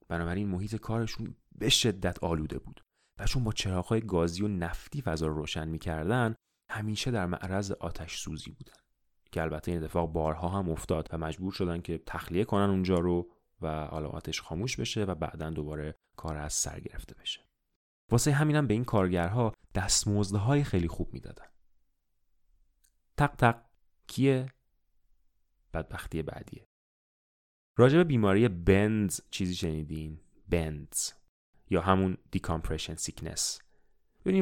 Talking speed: 135 wpm